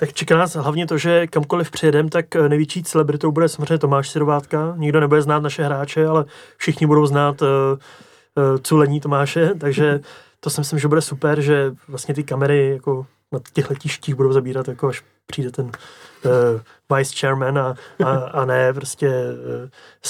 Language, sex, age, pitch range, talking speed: Czech, male, 20-39, 135-150 Hz, 175 wpm